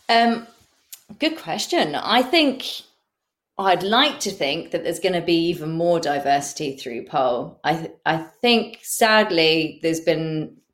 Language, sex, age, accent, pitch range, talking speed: English, female, 30-49, British, 155-195 Hz, 140 wpm